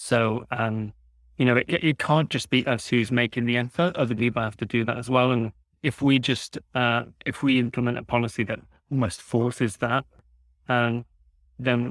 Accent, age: British, 30-49